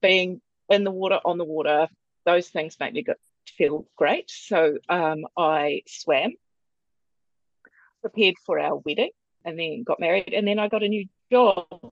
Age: 40-59